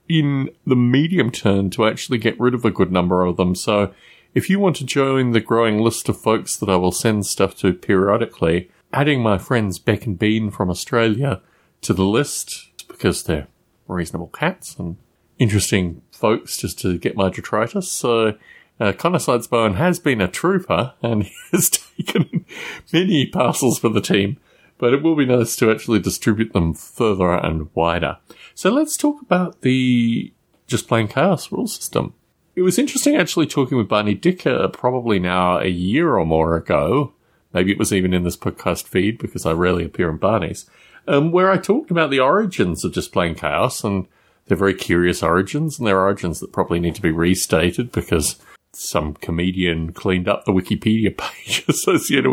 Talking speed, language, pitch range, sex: 180 wpm, English, 90-130 Hz, male